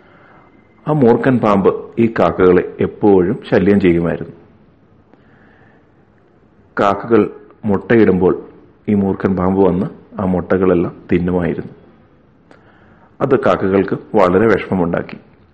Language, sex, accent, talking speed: Malayalam, male, native, 80 wpm